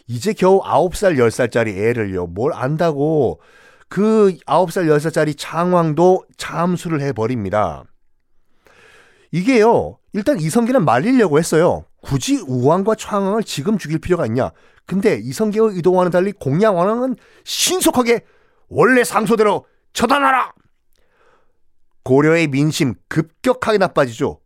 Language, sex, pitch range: Korean, male, 145-220 Hz